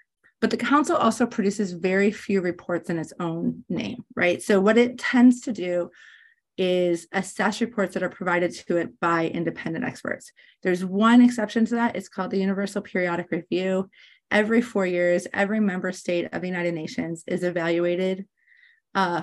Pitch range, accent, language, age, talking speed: 185-240 Hz, American, English, 30-49, 170 wpm